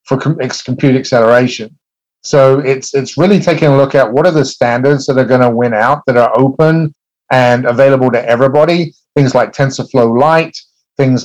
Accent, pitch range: British, 125-140 Hz